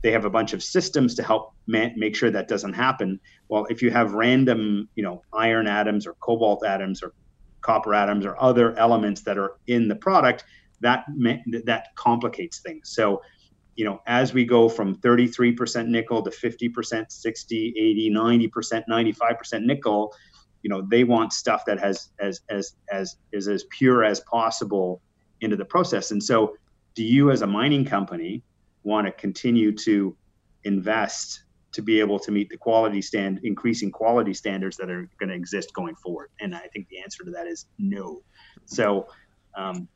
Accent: American